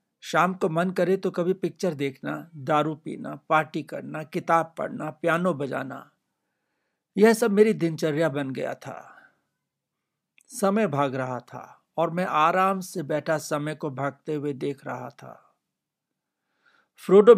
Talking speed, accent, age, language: 140 wpm, native, 60-79, Hindi